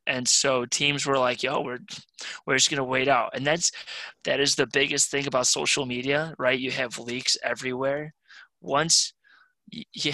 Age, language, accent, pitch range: 20-39, English, American, 125-140 Hz